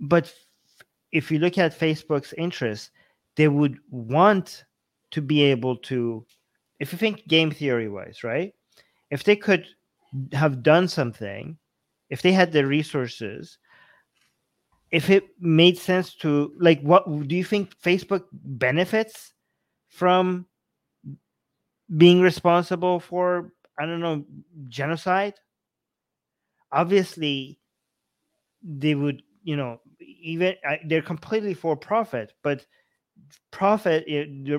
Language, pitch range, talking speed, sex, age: English, 145-180 Hz, 110 wpm, male, 30-49